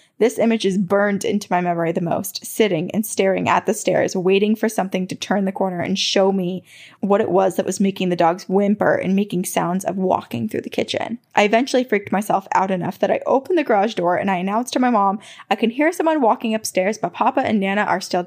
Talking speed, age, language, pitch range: 235 wpm, 20-39, English, 185-225 Hz